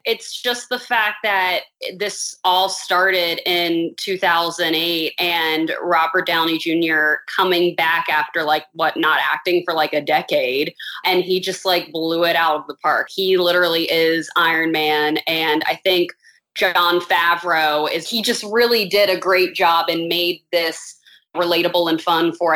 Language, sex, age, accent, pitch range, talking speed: English, female, 20-39, American, 160-185 Hz, 160 wpm